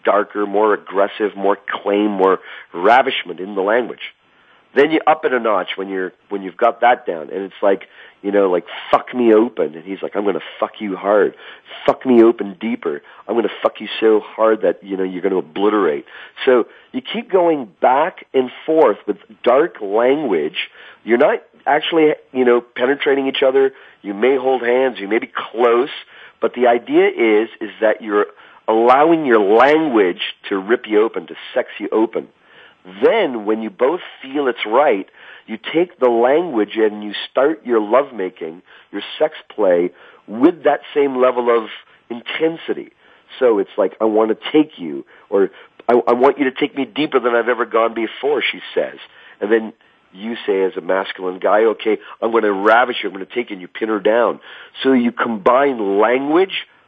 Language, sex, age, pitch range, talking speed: English, male, 40-59, 110-160 Hz, 190 wpm